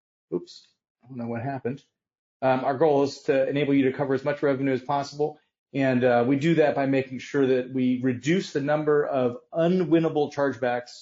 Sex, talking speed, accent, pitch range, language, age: male, 195 wpm, American, 125-160 Hz, English, 30-49